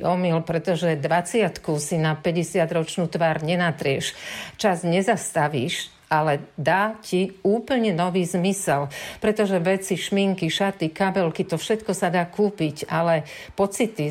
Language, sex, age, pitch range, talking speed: Slovak, female, 50-69, 160-190 Hz, 120 wpm